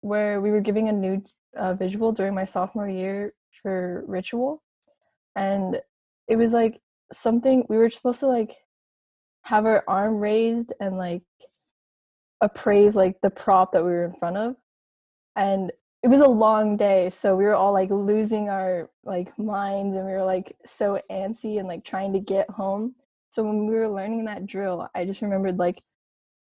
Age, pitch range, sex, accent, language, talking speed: 20-39, 195-230 Hz, female, American, English, 175 wpm